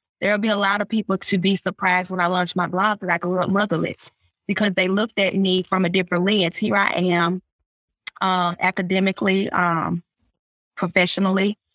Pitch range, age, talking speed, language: 170-195 Hz, 20-39, 180 wpm, English